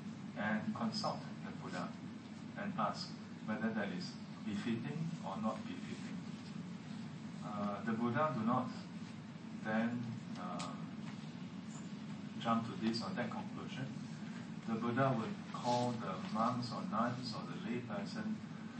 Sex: male